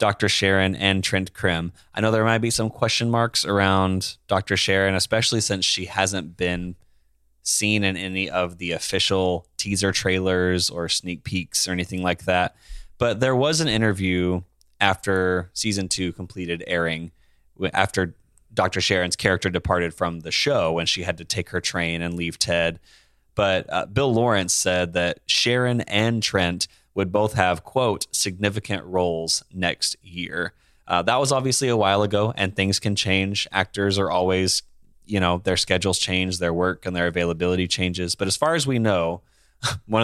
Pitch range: 90-105 Hz